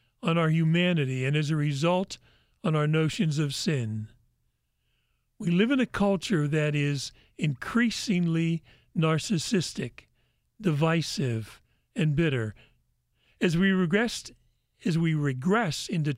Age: 50-69